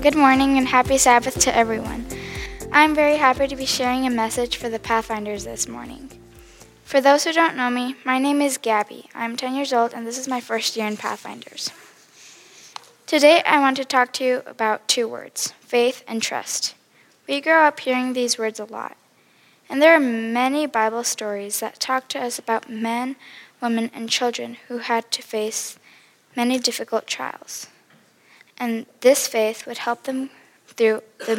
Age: 10-29